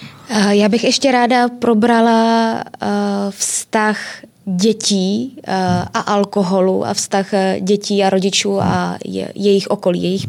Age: 20-39